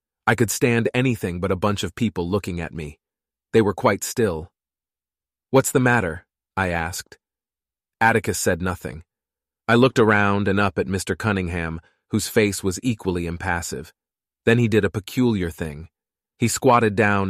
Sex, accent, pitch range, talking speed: male, American, 85-110 Hz, 160 wpm